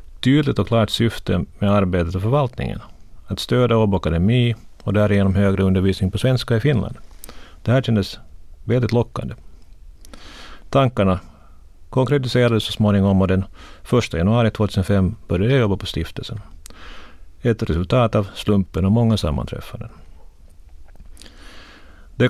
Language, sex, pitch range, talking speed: Swedish, male, 85-110 Hz, 120 wpm